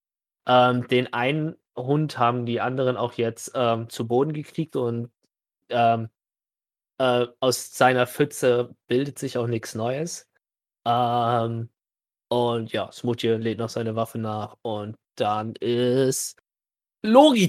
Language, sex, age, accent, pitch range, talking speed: German, male, 30-49, German, 115-145 Hz, 125 wpm